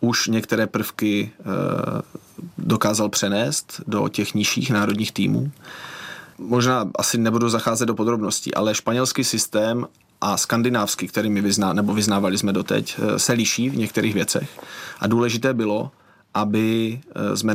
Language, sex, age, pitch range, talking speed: Czech, male, 30-49, 105-120 Hz, 125 wpm